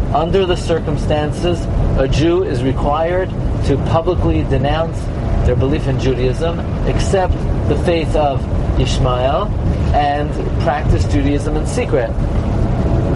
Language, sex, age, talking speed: English, male, 40-59, 110 wpm